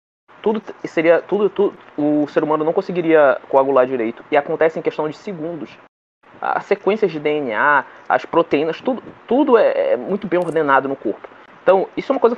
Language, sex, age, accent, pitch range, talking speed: Portuguese, male, 20-39, Brazilian, 145-220 Hz, 175 wpm